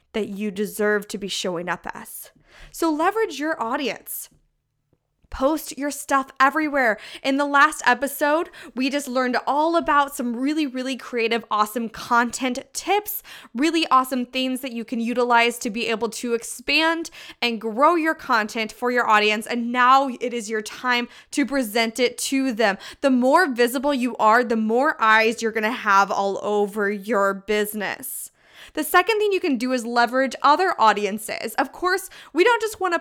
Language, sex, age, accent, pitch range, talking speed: English, female, 20-39, American, 225-290 Hz, 170 wpm